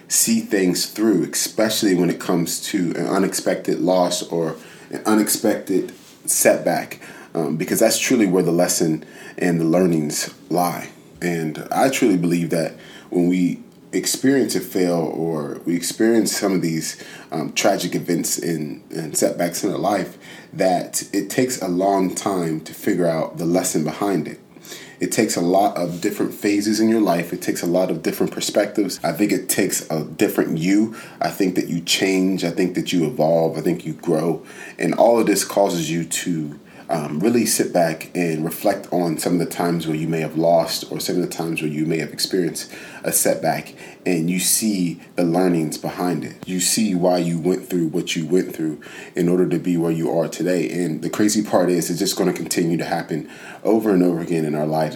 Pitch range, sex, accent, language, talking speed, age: 80-95 Hz, male, American, English, 195 wpm, 30-49